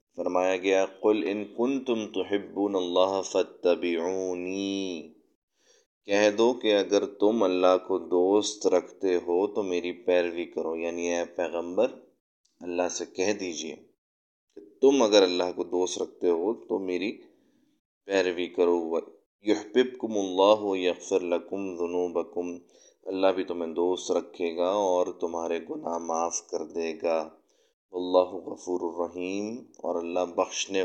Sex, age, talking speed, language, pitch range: male, 30-49, 130 wpm, Urdu, 85-100 Hz